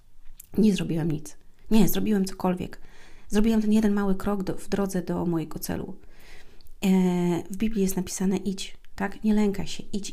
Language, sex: Polish, female